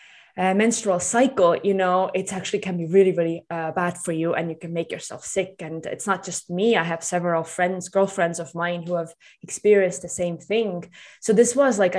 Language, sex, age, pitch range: English, female, 20-39, 170-195 Hz